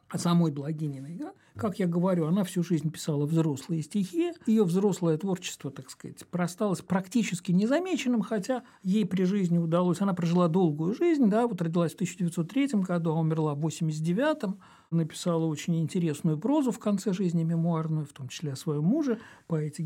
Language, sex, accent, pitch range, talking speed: Russian, male, native, 155-205 Hz, 170 wpm